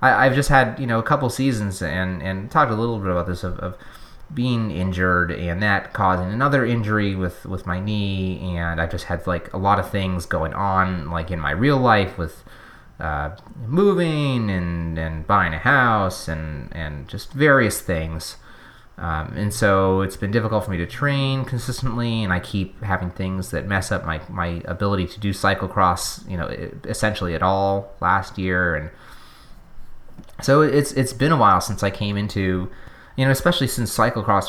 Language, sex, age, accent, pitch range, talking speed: English, male, 30-49, American, 90-110 Hz, 185 wpm